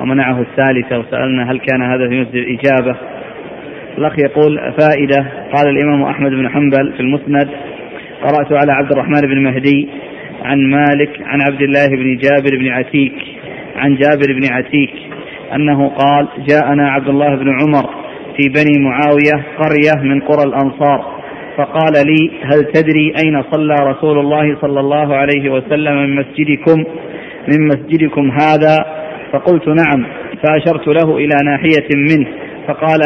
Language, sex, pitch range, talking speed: Arabic, male, 140-155 Hz, 140 wpm